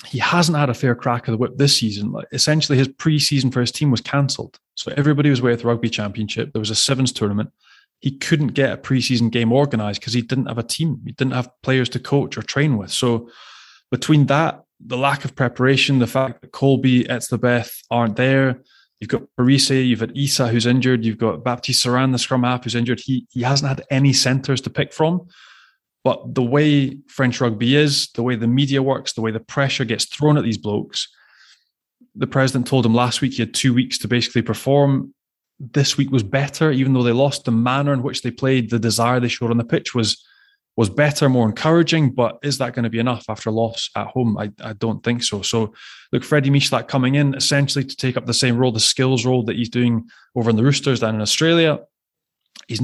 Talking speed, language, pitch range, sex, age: 225 wpm, English, 120-140 Hz, male, 20-39